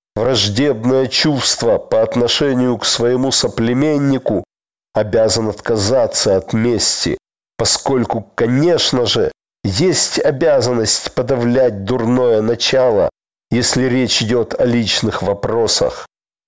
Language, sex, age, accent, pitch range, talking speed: Russian, male, 50-69, native, 115-135 Hz, 90 wpm